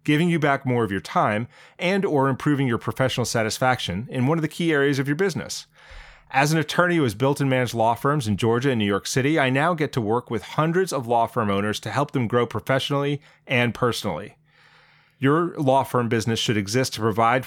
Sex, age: male, 30-49